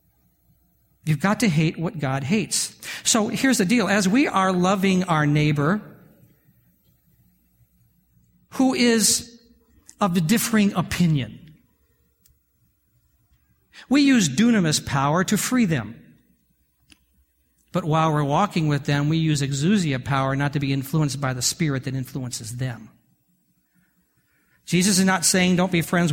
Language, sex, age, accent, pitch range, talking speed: English, male, 50-69, American, 125-175 Hz, 130 wpm